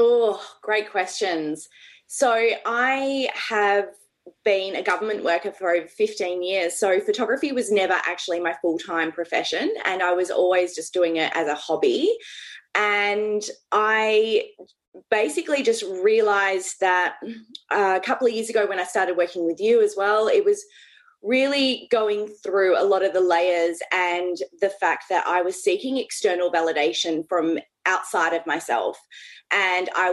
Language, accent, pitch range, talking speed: English, Australian, 175-230 Hz, 150 wpm